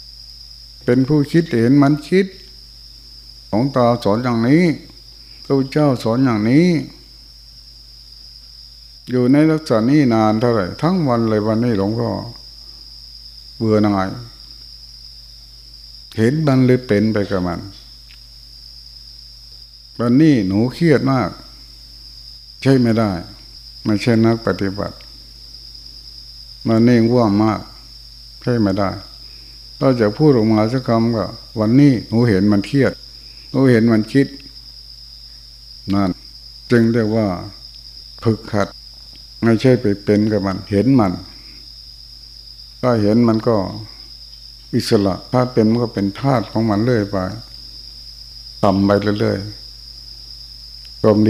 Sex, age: male, 60-79